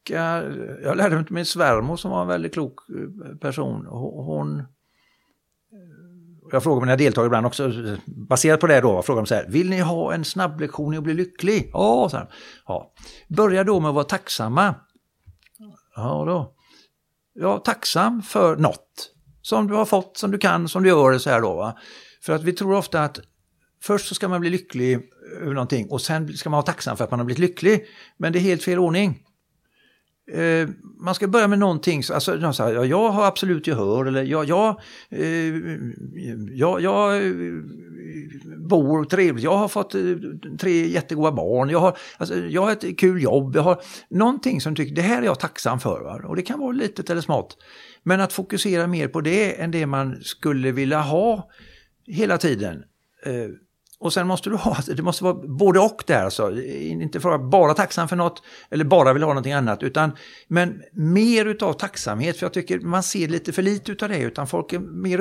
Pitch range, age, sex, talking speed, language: 145-190 Hz, 60-79, male, 190 wpm, Swedish